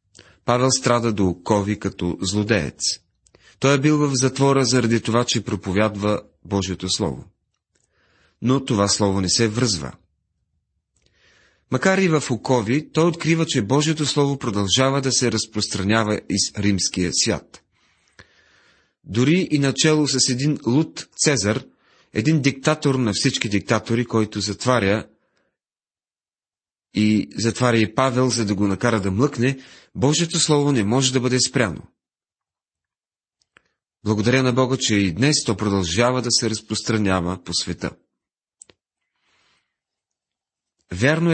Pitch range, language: 100-130 Hz, Bulgarian